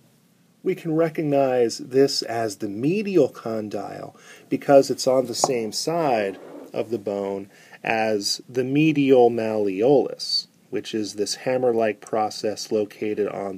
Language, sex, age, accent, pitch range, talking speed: English, male, 40-59, American, 105-150 Hz, 125 wpm